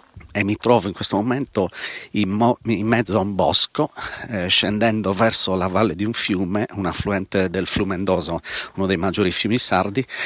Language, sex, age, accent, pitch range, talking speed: Italian, male, 40-59, native, 95-110 Hz, 175 wpm